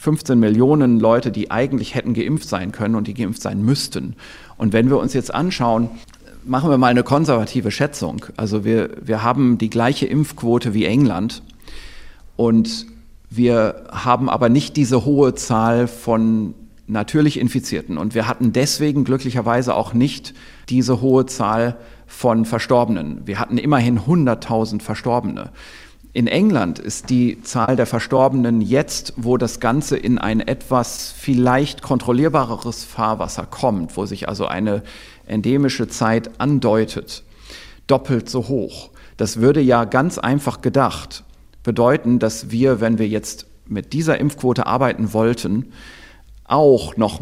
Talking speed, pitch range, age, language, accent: 140 wpm, 110-130 Hz, 40-59, German, German